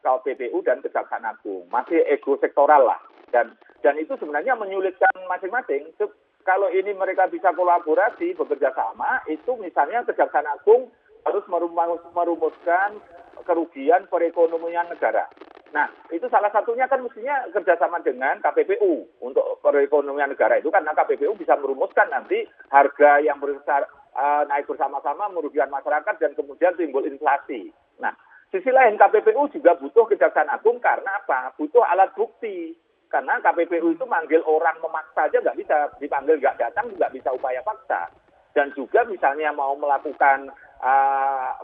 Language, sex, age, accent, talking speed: Indonesian, male, 50-69, native, 135 wpm